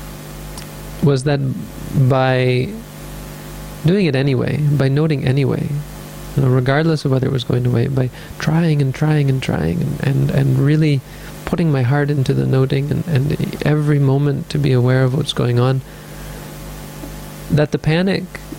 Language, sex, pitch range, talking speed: English, male, 130-155 Hz, 150 wpm